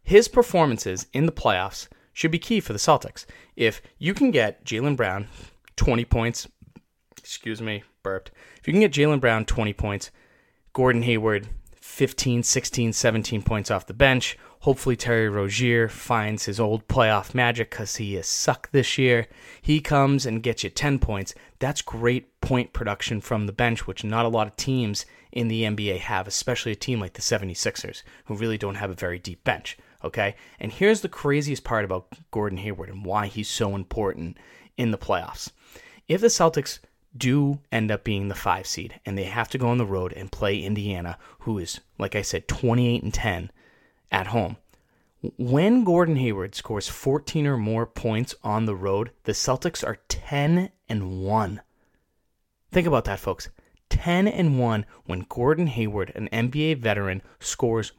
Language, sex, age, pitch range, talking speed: English, male, 20-39, 105-135 Hz, 175 wpm